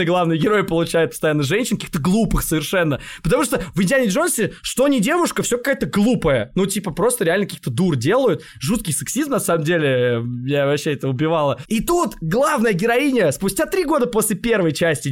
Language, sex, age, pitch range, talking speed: Russian, male, 20-39, 180-260 Hz, 180 wpm